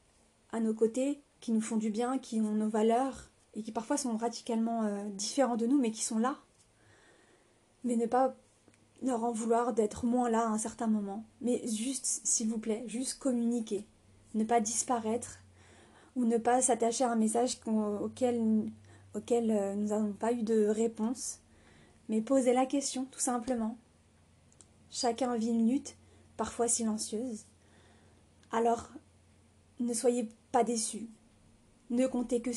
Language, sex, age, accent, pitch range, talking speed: French, female, 30-49, French, 215-245 Hz, 155 wpm